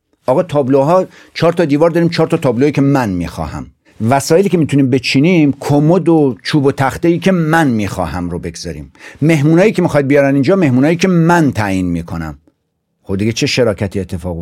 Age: 60-79